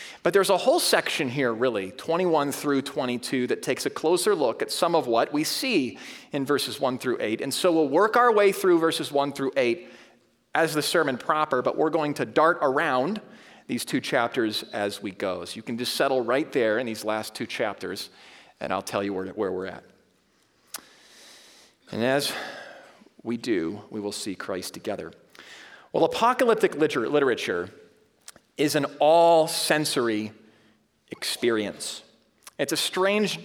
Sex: male